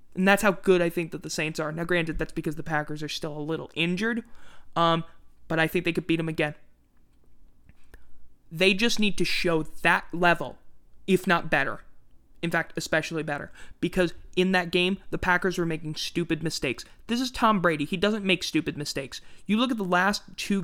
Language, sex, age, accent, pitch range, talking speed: English, male, 20-39, American, 155-185 Hz, 200 wpm